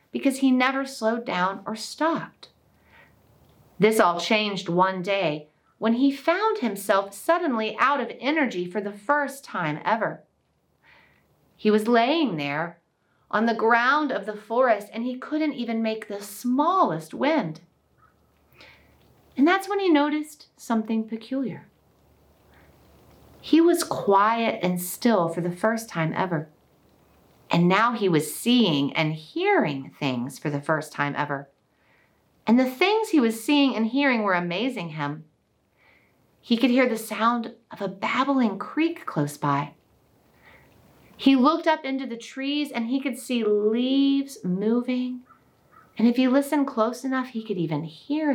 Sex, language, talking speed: female, English, 145 wpm